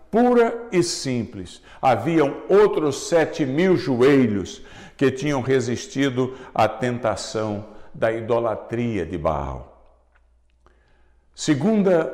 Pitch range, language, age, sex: 110-150 Hz, Portuguese, 60-79, male